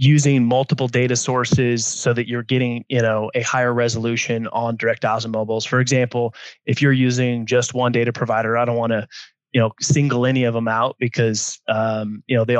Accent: American